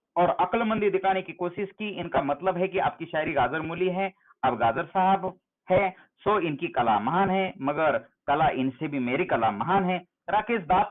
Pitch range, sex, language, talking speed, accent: 140-195 Hz, male, Hindi, 185 wpm, native